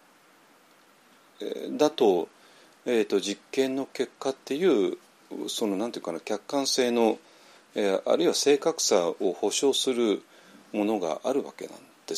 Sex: male